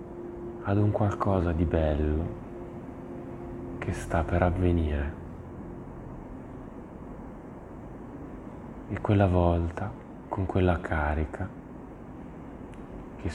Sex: male